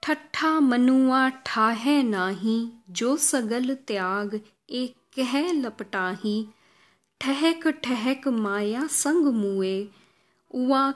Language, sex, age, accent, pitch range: Hindi, female, 20-39, native, 210-275 Hz